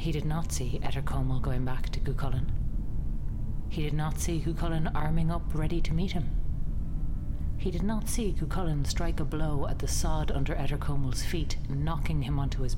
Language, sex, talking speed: English, female, 180 wpm